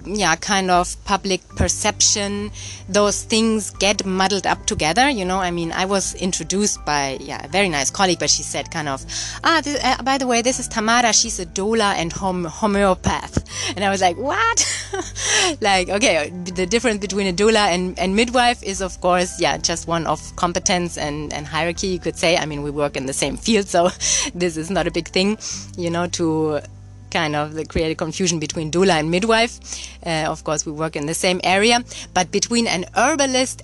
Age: 20-39